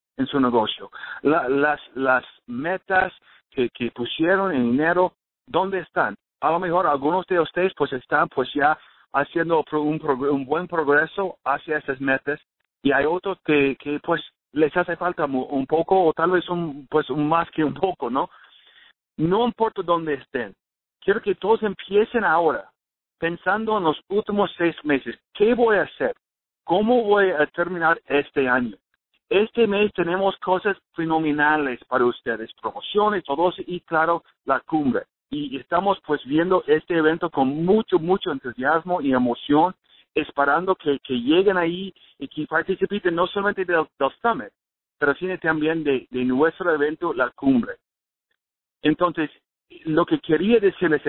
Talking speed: 155 wpm